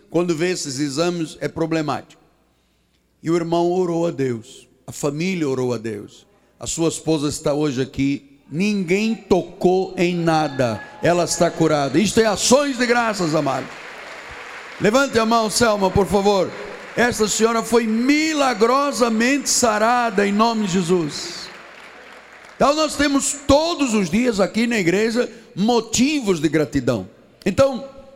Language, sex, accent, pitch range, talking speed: Portuguese, male, Brazilian, 170-245 Hz, 135 wpm